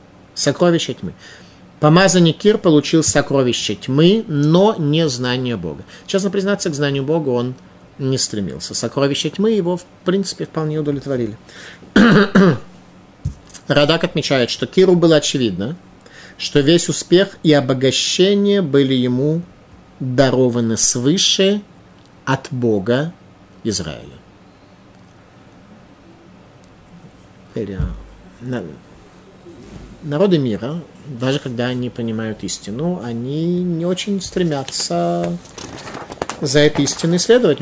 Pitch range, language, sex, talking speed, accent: 115-165 Hz, Russian, male, 95 wpm, native